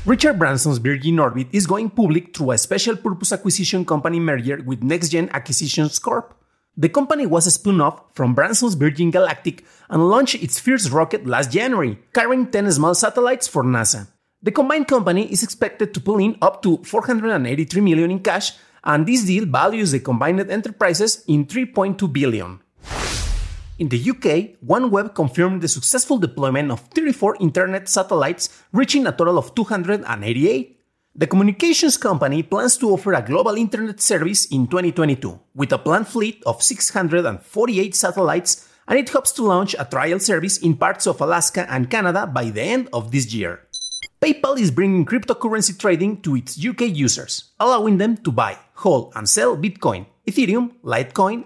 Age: 40-59